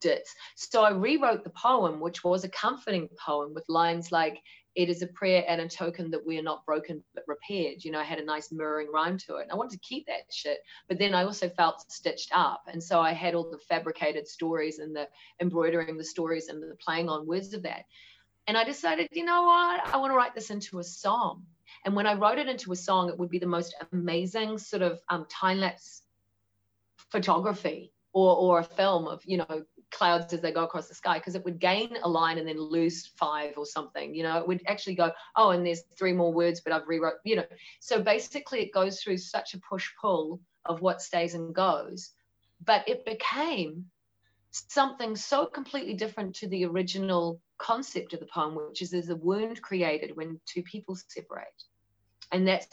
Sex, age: female, 30-49